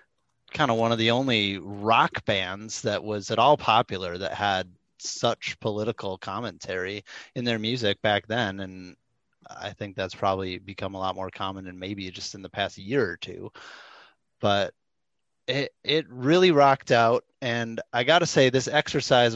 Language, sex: English, male